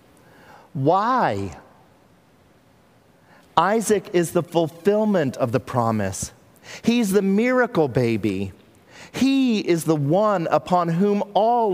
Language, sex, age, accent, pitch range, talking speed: English, male, 40-59, American, 125-175 Hz, 95 wpm